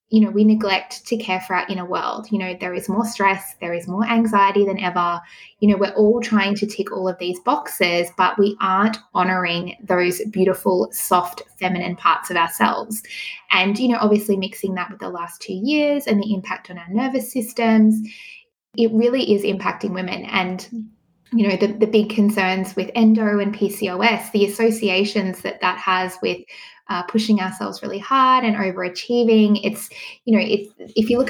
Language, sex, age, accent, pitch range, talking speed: English, female, 20-39, Australian, 185-225 Hz, 185 wpm